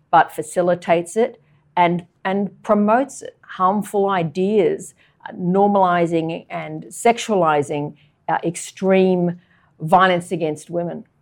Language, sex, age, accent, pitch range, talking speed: English, female, 50-69, Australian, 170-205 Hz, 90 wpm